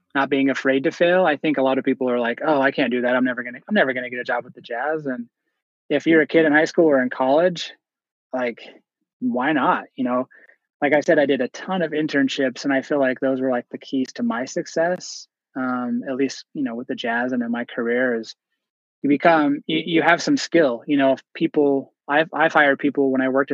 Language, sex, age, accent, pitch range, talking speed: English, male, 20-39, American, 125-155 Hz, 250 wpm